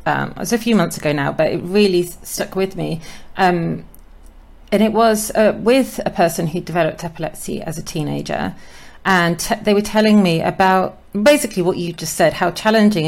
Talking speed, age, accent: 185 wpm, 40-59, British